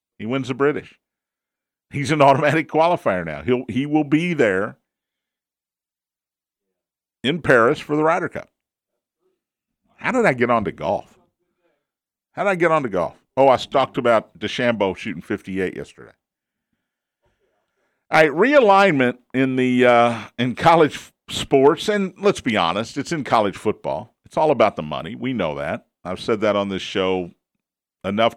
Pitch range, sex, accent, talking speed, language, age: 115-155 Hz, male, American, 155 wpm, English, 50-69